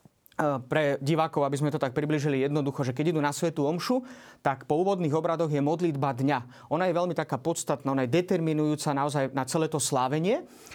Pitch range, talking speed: 140-175 Hz, 190 wpm